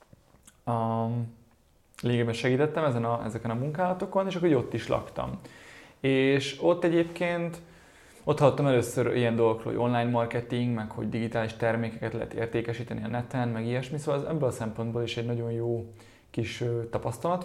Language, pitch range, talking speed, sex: Hungarian, 115-135 Hz, 150 wpm, male